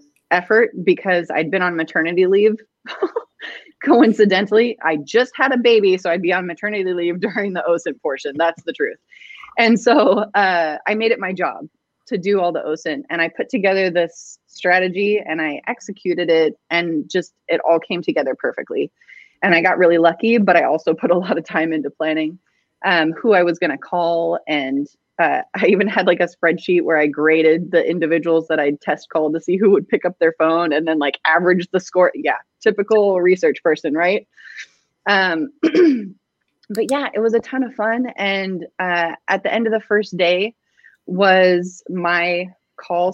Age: 30-49